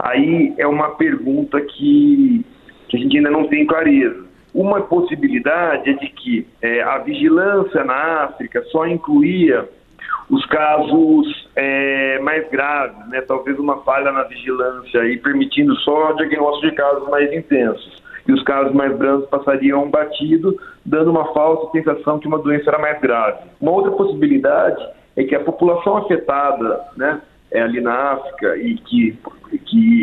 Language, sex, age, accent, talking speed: Portuguese, male, 40-59, Brazilian, 155 wpm